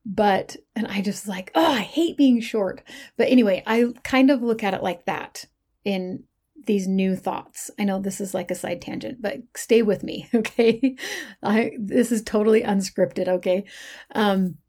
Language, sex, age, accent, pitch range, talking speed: English, female, 30-49, American, 190-235 Hz, 180 wpm